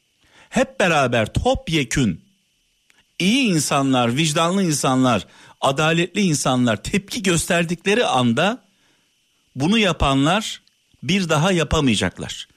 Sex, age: male, 50-69